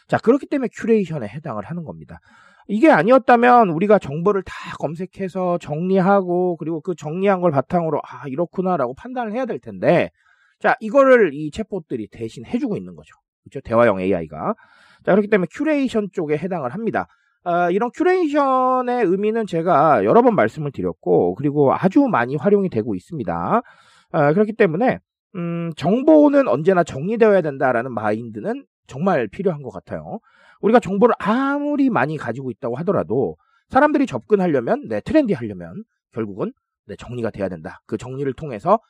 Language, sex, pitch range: Korean, male, 145-225 Hz